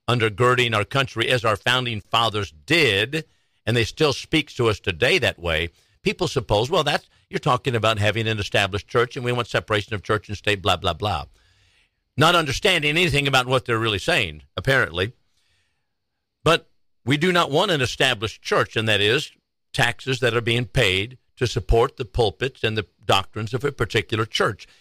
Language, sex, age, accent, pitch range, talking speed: English, male, 50-69, American, 105-140 Hz, 180 wpm